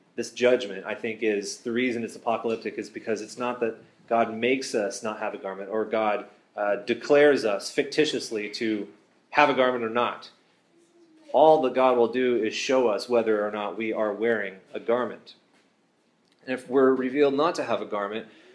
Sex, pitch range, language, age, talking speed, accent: male, 110-130 Hz, English, 30-49, 190 wpm, American